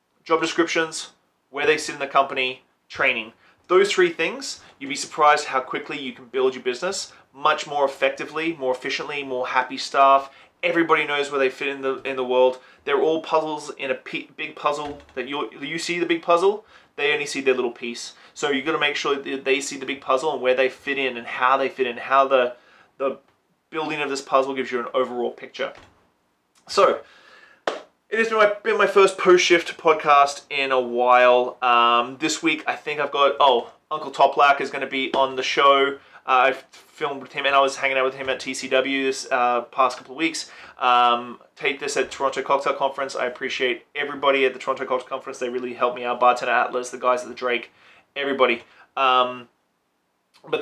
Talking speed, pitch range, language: 205 wpm, 125-150 Hz, English